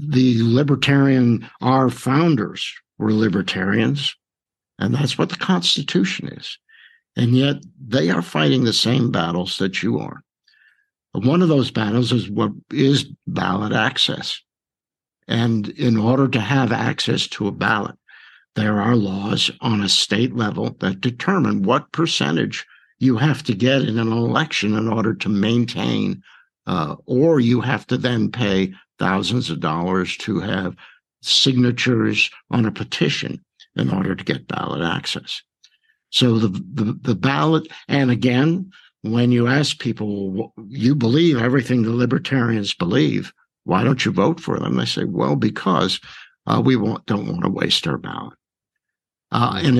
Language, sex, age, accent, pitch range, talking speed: English, male, 60-79, American, 110-135 Hz, 150 wpm